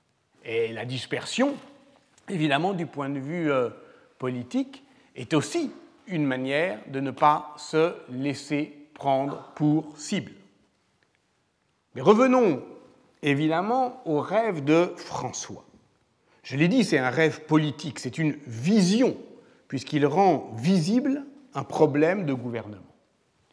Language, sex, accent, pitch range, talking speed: French, male, French, 135-185 Hz, 115 wpm